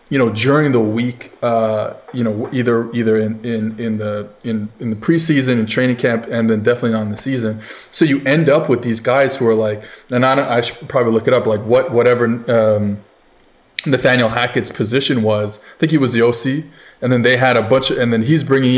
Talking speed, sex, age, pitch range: 225 wpm, male, 20-39, 115-140 Hz